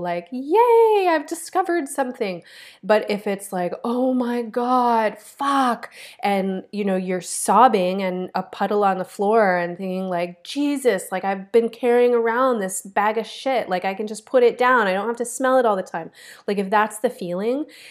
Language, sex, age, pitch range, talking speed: English, female, 20-39, 180-225 Hz, 195 wpm